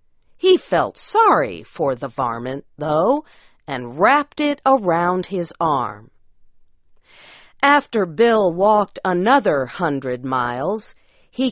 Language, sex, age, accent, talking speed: English, female, 40-59, American, 105 wpm